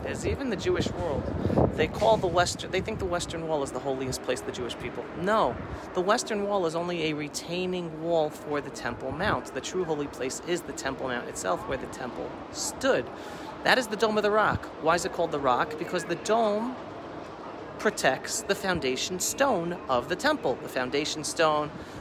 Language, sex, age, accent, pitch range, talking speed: English, male, 30-49, American, 145-180 Hz, 200 wpm